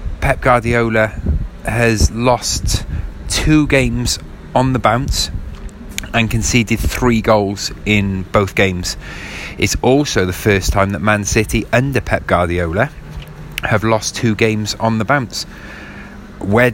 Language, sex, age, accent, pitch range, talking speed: English, male, 30-49, British, 95-130 Hz, 125 wpm